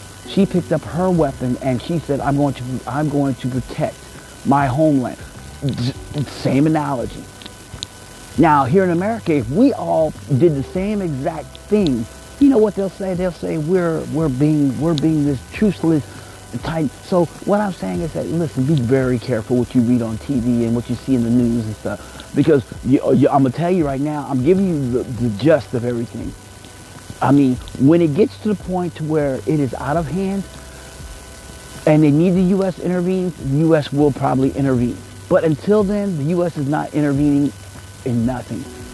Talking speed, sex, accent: 190 wpm, male, American